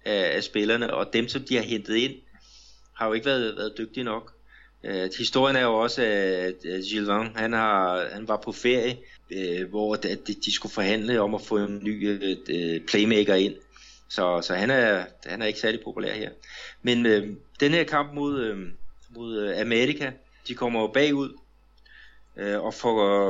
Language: Danish